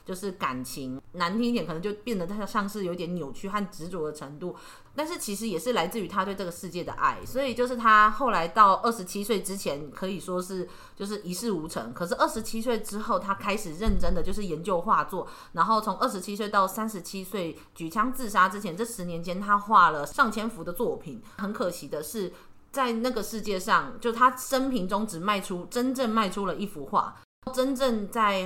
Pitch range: 175-225 Hz